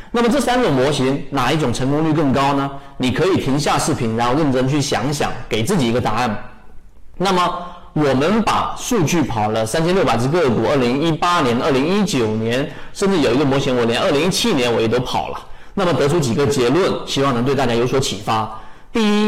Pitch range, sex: 120-175 Hz, male